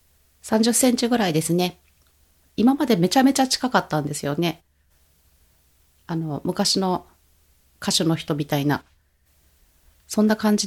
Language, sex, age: Japanese, female, 30-49